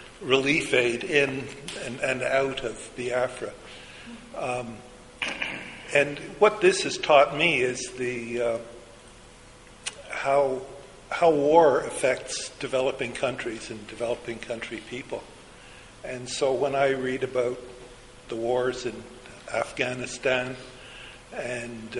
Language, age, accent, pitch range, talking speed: English, 60-79, American, 120-145 Hz, 110 wpm